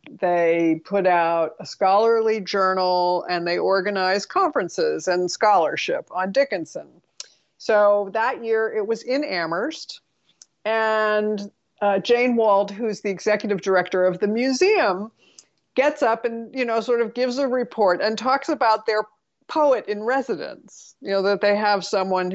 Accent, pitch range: American, 190-255 Hz